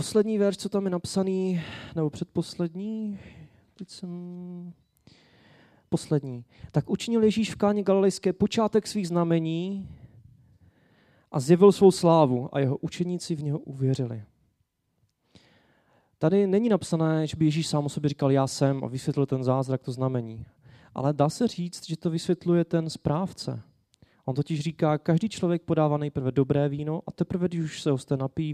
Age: 20-39